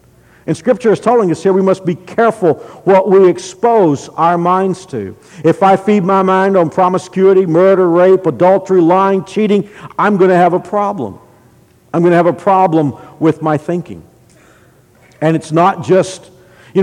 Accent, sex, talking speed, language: American, male, 170 wpm, English